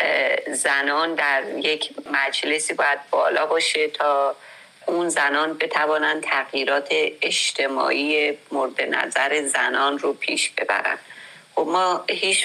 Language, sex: Persian, female